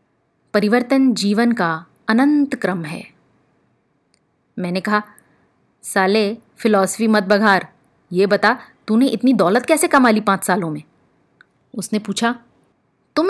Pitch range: 200-260 Hz